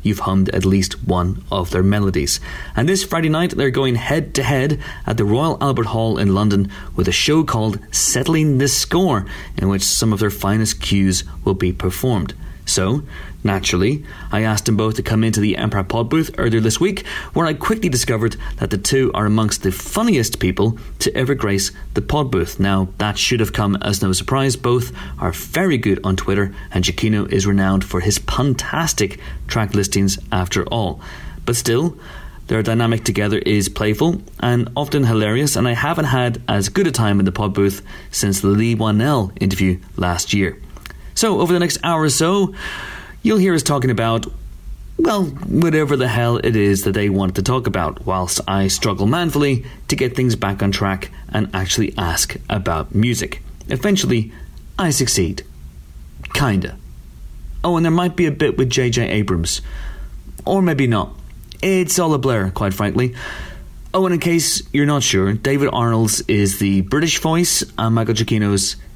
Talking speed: 180 wpm